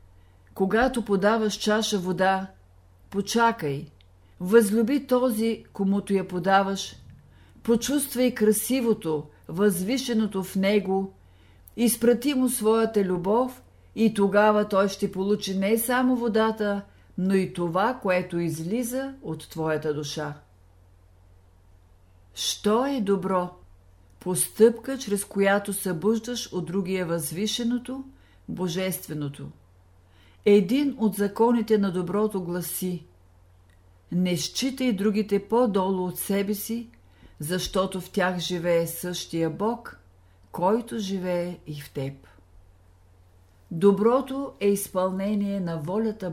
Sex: female